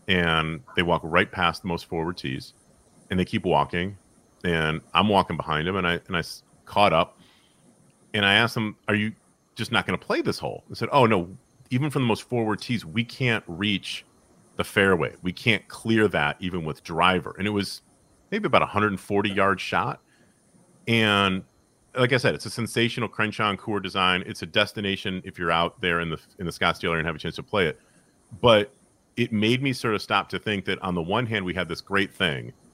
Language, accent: English, American